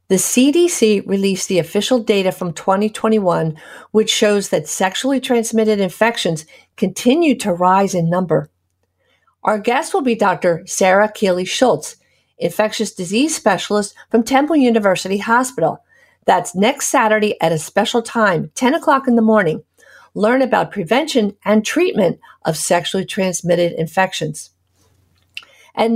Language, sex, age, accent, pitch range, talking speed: English, female, 50-69, American, 185-240 Hz, 130 wpm